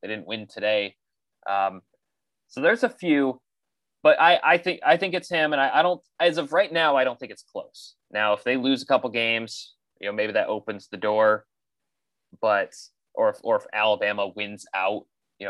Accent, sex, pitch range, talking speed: American, male, 110-140 Hz, 205 wpm